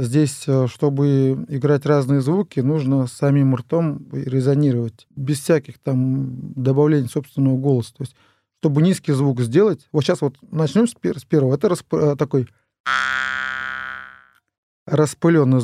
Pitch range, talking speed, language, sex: 125-150 Hz, 120 wpm, Russian, male